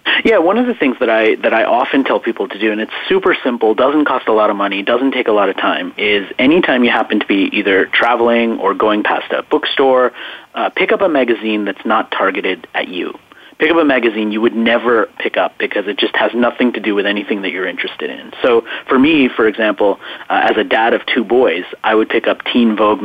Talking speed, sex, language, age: 240 wpm, male, English, 30-49